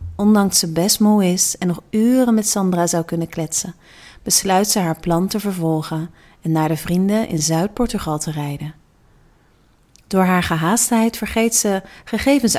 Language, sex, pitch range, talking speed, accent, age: English, female, 165-210 Hz, 155 wpm, Dutch, 30-49